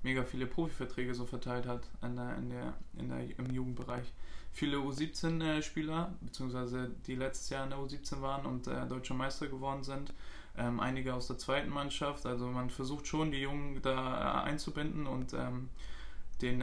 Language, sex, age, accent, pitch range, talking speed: German, male, 20-39, German, 125-140 Hz, 170 wpm